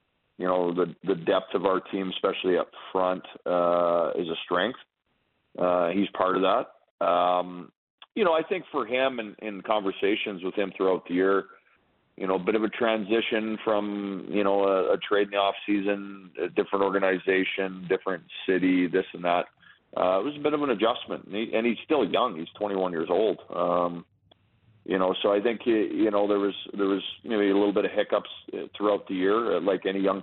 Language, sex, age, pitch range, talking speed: English, male, 40-59, 95-105 Hz, 205 wpm